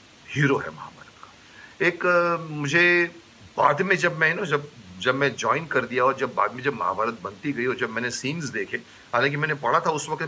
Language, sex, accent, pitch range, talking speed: Hindi, male, native, 110-150 Hz, 210 wpm